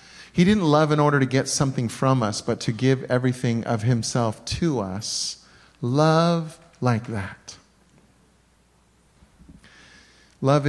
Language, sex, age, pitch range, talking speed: English, male, 40-59, 110-130 Hz, 125 wpm